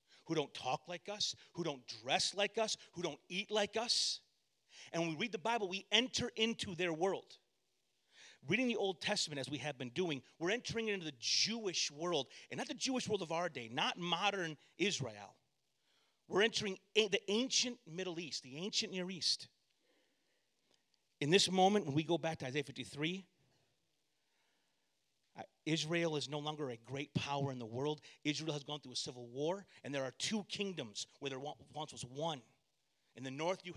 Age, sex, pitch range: 40-59, male, 140-190 Hz